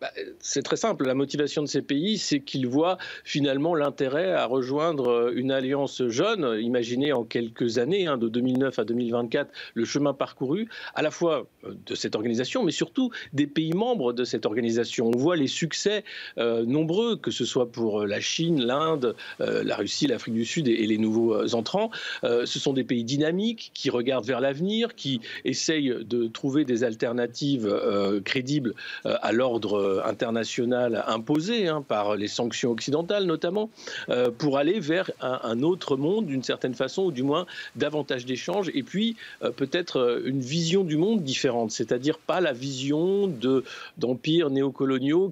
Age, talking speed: 50-69, 170 wpm